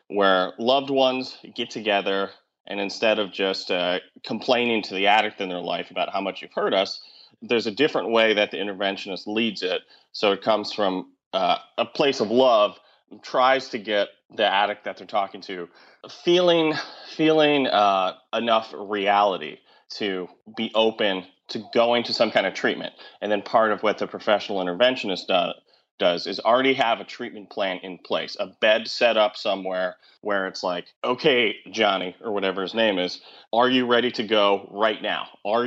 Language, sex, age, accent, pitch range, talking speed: English, male, 30-49, American, 100-120 Hz, 180 wpm